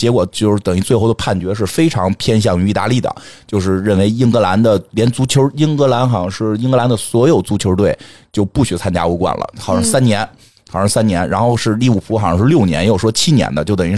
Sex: male